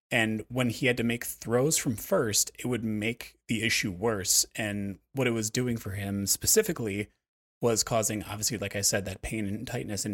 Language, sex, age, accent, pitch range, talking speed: English, male, 30-49, American, 100-125 Hz, 200 wpm